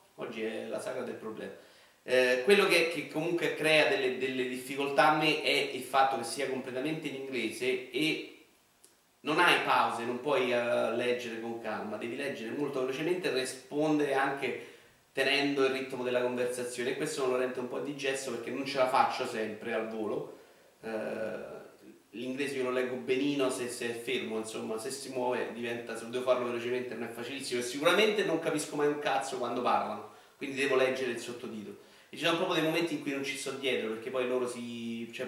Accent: native